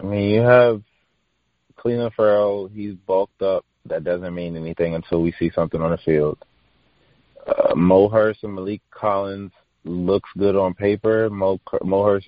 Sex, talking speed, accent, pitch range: male, 140 wpm, American, 85-105 Hz